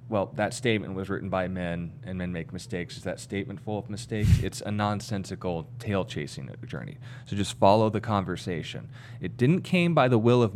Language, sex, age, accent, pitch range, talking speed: English, male, 30-49, American, 105-130 Hz, 200 wpm